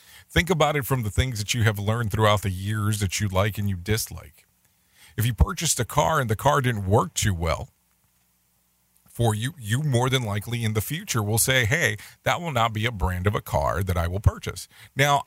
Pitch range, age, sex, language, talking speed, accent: 100-135 Hz, 40-59, male, English, 225 wpm, American